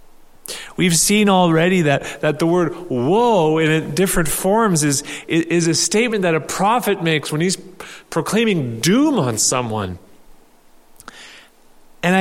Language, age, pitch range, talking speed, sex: English, 30-49, 150-200 Hz, 130 wpm, male